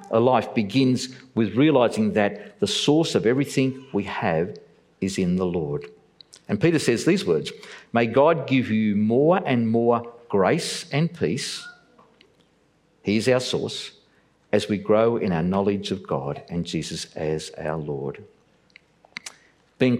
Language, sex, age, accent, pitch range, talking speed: English, male, 50-69, Australian, 105-145 Hz, 145 wpm